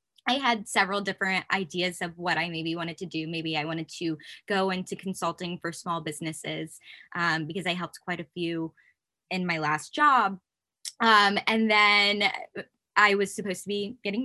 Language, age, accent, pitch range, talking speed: English, 20-39, American, 170-205 Hz, 175 wpm